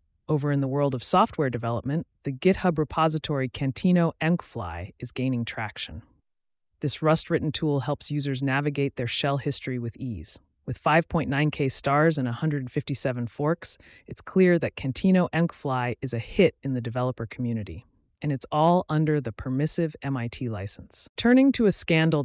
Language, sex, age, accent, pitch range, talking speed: English, female, 30-49, American, 120-160 Hz, 150 wpm